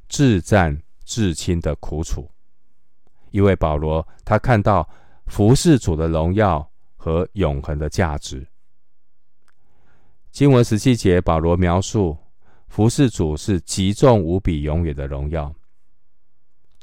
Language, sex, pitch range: Chinese, male, 75-105 Hz